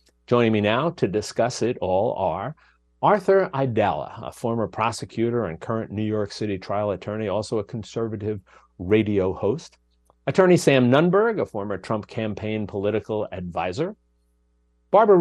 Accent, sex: American, male